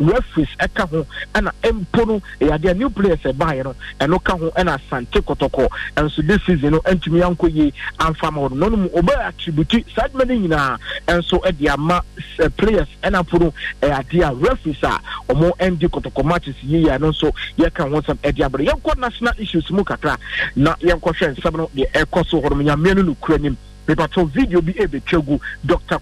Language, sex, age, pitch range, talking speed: English, male, 50-69, 150-185 Hz, 210 wpm